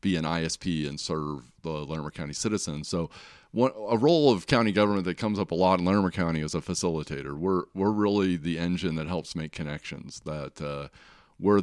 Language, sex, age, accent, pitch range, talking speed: English, male, 40-59, American, 80-100 Hz, 200 wpm